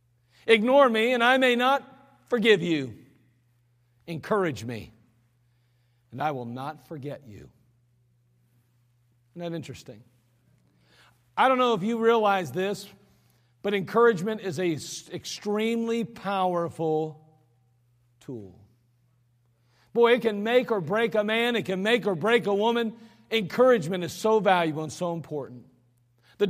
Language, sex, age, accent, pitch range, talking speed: English, male, 50-69, American, 120-200 Hz, 125 wpm